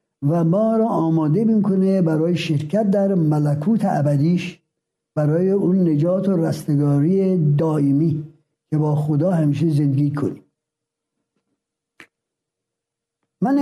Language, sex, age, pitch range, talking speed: Persian, male, 60-79, 160-220 Hz, 100 wpm